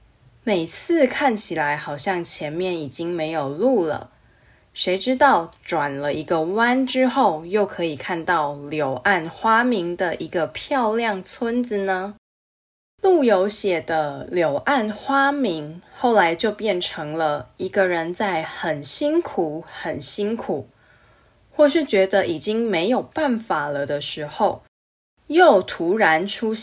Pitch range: 160-245 Hz